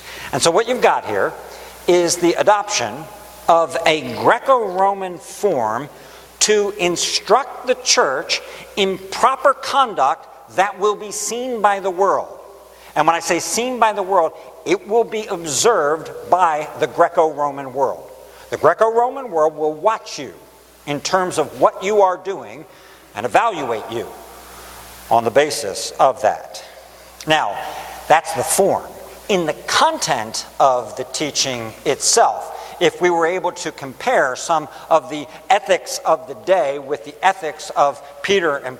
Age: 60-79